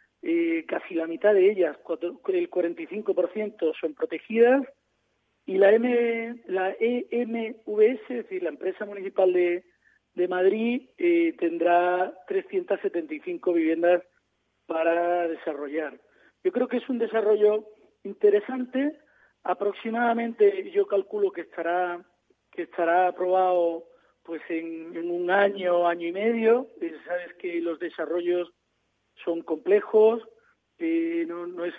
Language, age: Spanish, 40-59